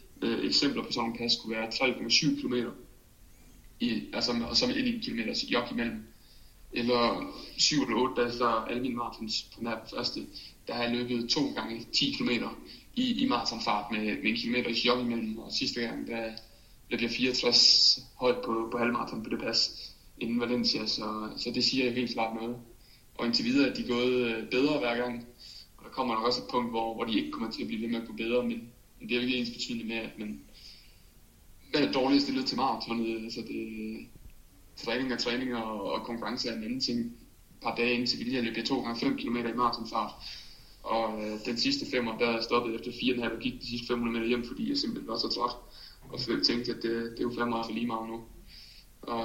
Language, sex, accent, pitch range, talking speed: Danish, male, native, 115-125 Hz, 220 wpm